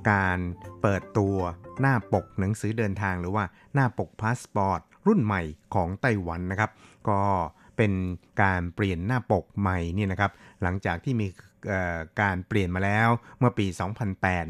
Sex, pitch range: male, 95-110 Hz